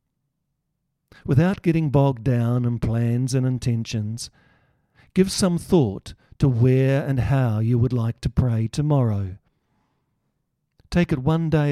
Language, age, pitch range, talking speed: English, 50-69, 115-145 Hz, 130 wpm